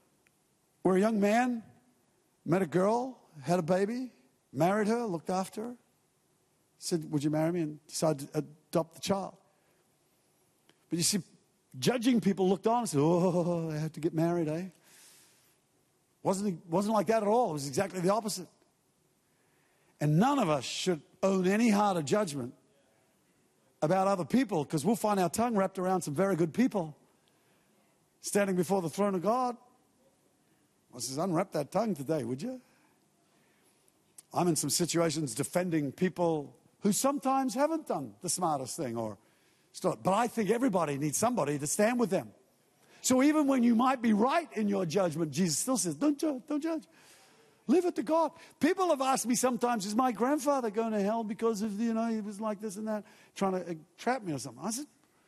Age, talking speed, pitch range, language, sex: 50-69, 180 wpm, 170-240 Hz, English, male